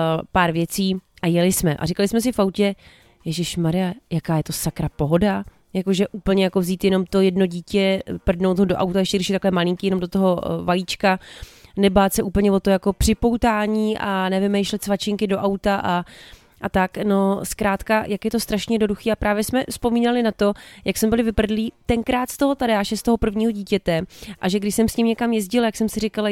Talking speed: 210 wpm